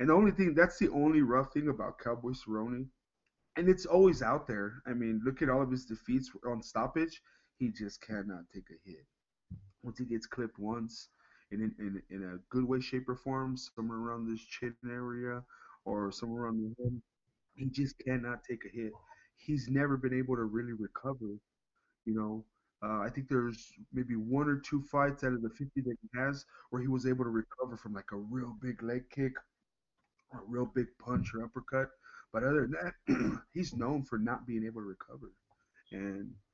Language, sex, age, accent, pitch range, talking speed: English, male, 20-39, American, 115-140 Hz, 195 wpm